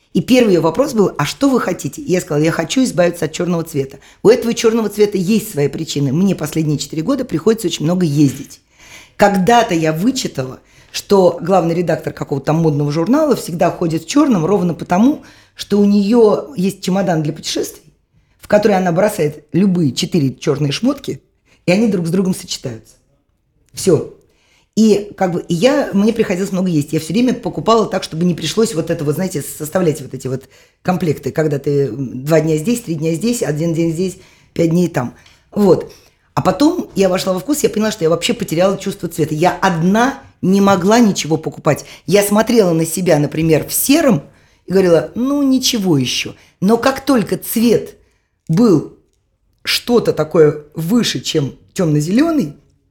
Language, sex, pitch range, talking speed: Russian, female, 150-210 Hz, 170 wpm